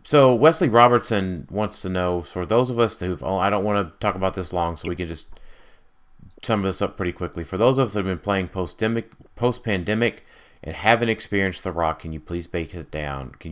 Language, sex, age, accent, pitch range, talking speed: English, male, 30-49, American, 85-110 Hz, 230 wpm